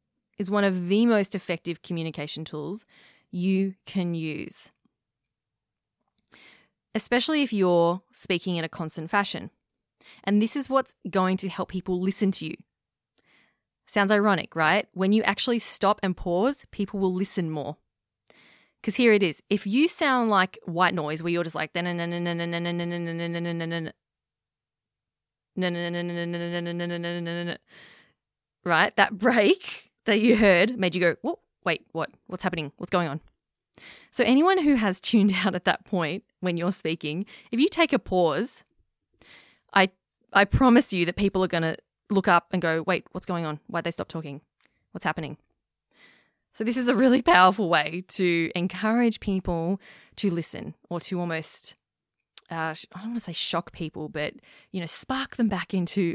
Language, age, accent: English, 20-39, Australian